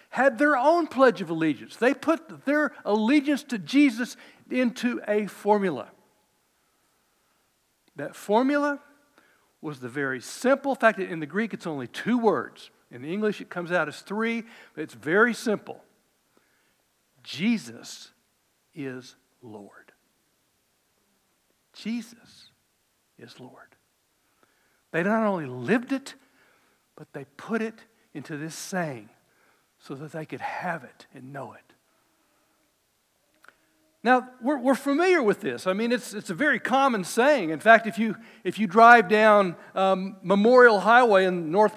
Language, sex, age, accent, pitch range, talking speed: English, male, 60-79, American, 180-255 Hz, 140 wpm